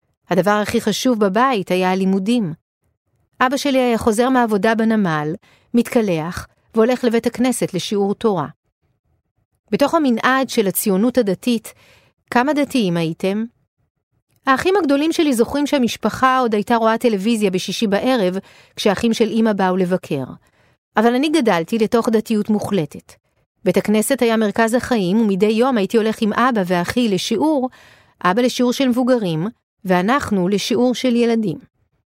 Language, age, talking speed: Hebrew, 40-59, 130 wpm